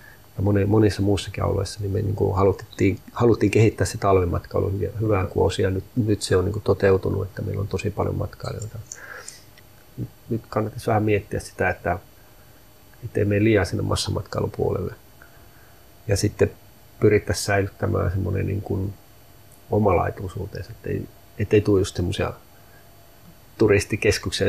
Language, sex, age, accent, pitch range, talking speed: Finnish, male, 30-49, native, 100-105 Hz, 125 wpm